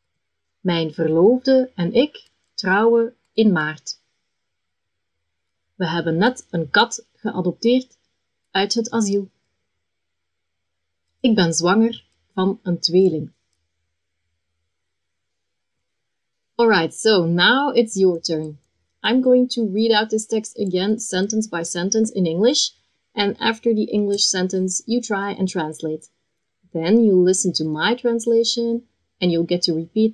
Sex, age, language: female, 30-49, English